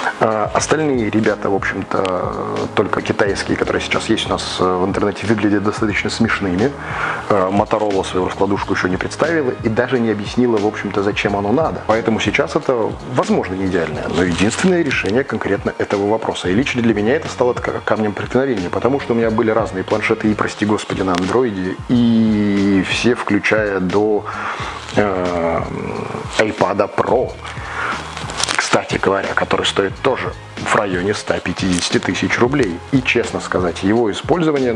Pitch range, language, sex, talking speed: 95-115 Hz, Russian, male, 290 wpm